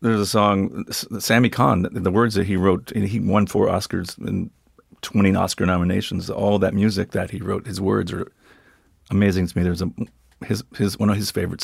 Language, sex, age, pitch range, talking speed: English, male, 40-59, 90-105 Hz, 195 wpm